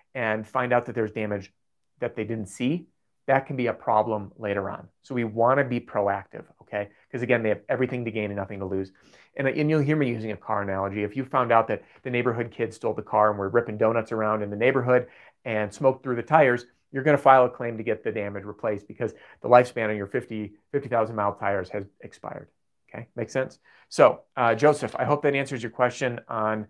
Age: 30-49